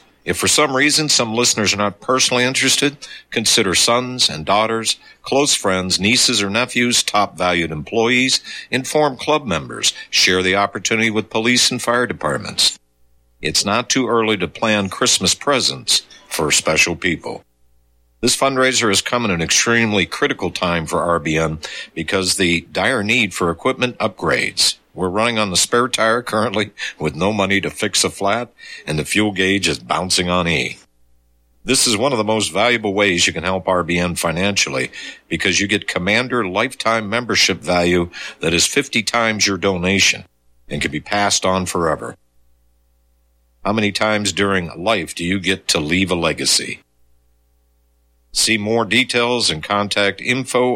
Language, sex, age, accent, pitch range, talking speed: English, male, 60-79, American, 85-115 Hz, 160 wpm